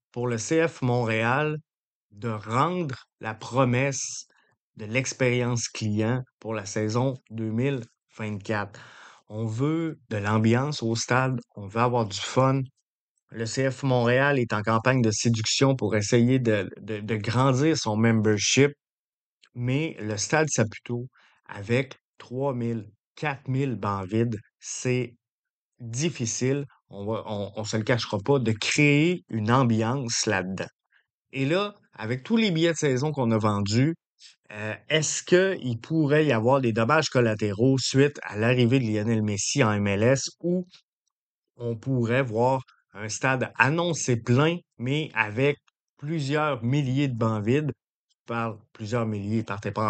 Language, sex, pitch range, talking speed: French, male, 110-135 Hz, 140 wpm